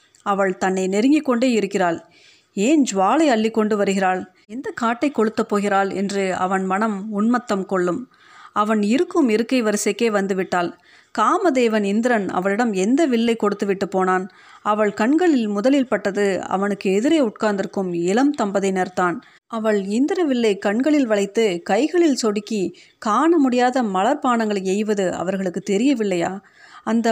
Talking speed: 120 wpm